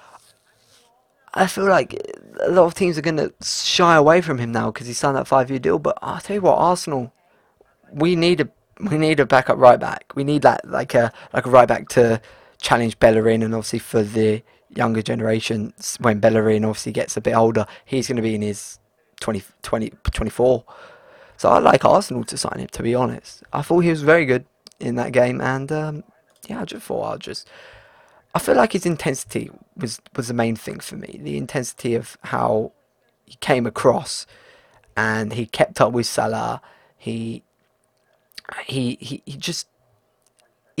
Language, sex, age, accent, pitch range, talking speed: English, male, 20-39, British, 110-150 Hz, 185 wpm